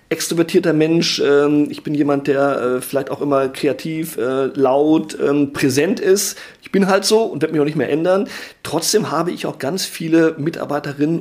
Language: German